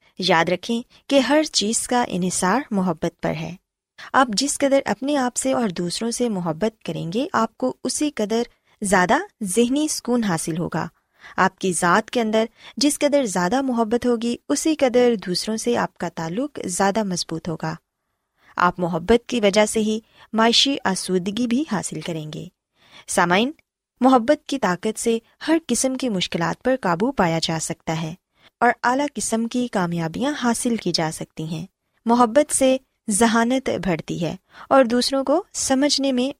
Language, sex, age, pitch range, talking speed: Urdu, female, 20-39, 180-255 Hz, 160 wpm